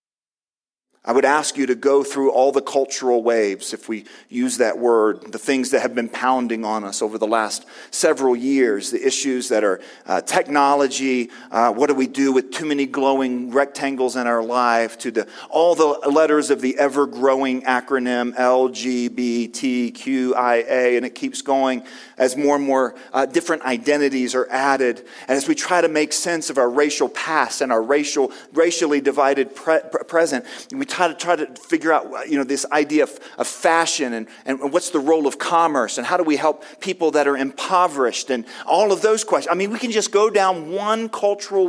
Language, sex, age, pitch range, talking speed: English, male, 40-59, 130-170 Hz, 190 wpm